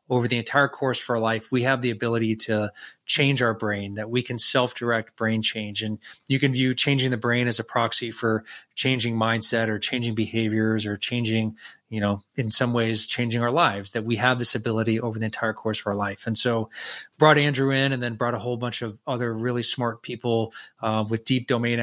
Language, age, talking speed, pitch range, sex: English, 20-39, 220 wpm, 110-130 Hz, male